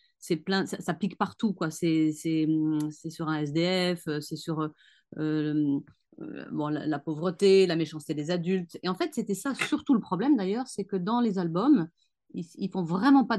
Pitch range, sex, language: 175-225 Hz, female, French